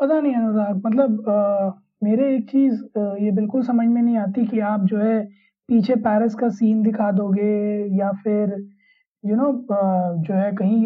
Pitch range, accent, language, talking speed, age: 210-280 Hz, native, Hindi, 180 wpm, 20-39